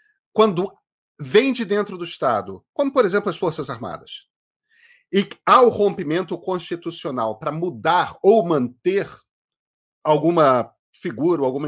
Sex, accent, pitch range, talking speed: male, Brazilian, 160-220 Hz, 130 wpm